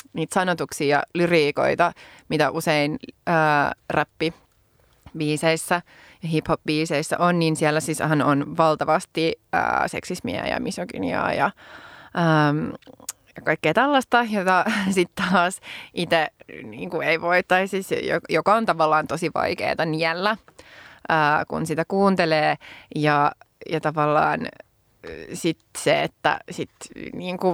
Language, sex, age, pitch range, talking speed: Finnish, female, 20-39, 155-200 Hz, 110 wpm